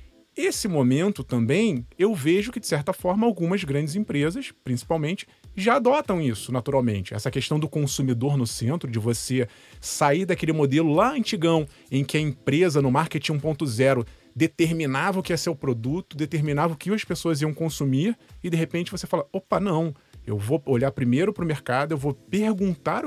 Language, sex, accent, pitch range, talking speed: Portuguese, male, Brazilian, 125-180 Hz, 175 wpm